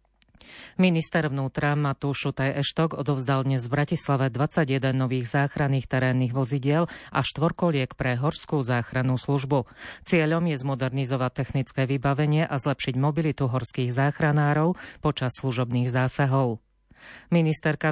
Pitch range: 130-150 Hz